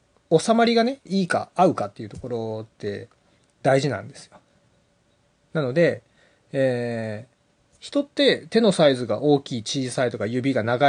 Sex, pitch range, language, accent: male, 125-195 Hz, Japanese, native